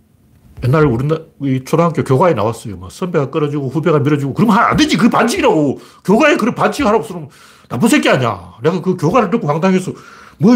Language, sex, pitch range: Korean, male, 110-180 Hz